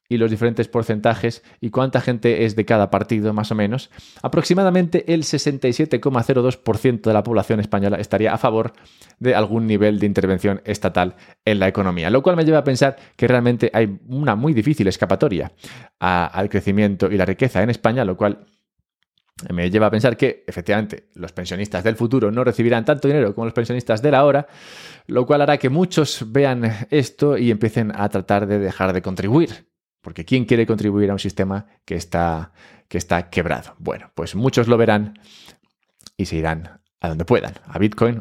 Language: English